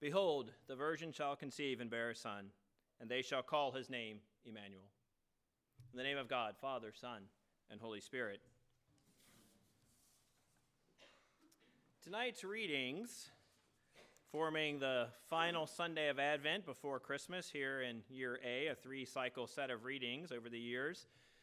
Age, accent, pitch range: 30-49, American, 125-160 Hz